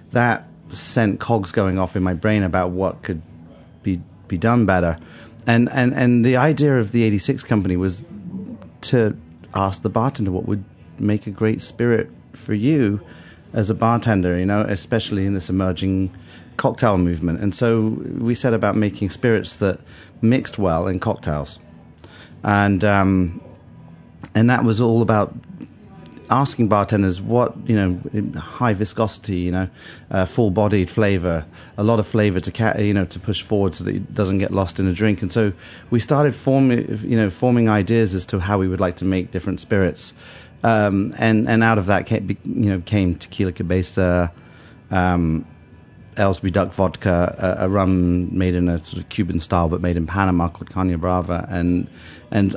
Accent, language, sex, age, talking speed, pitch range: British, English, male, 30-49, 175 wpm, 90-110 Hz